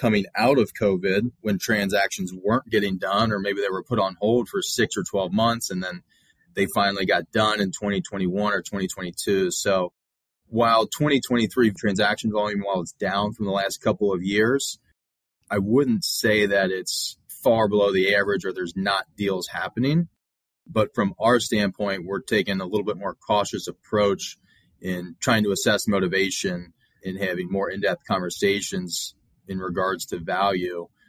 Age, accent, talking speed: 30-49, American, 165 wpm